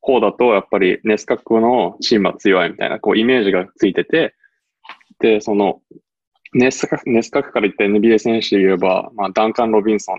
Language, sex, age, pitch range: Japanese, male, 20-39, 95-125 Hz